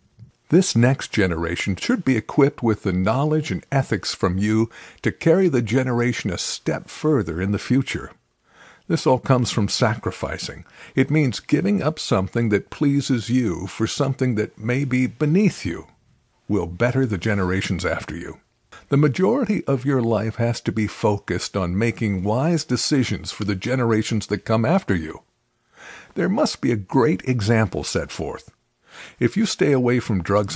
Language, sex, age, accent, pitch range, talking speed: English, male, 50-69, American, 100-135 Hz, 165 wpm